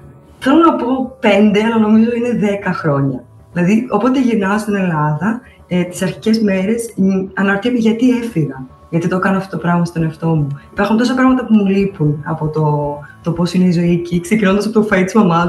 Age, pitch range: 20-39, 160-220 Hz